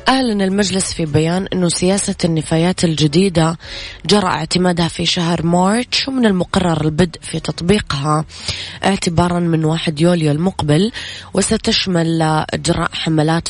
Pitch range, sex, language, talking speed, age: 155-180 Hz, female, Arabic, 115 wpm, 20-39